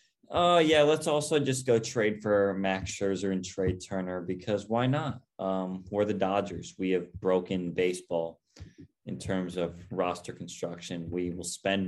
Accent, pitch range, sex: American, 90-105 Hz, male